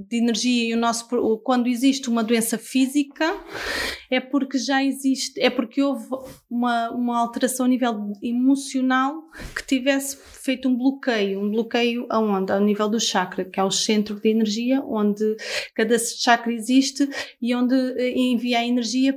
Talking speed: 155 wpm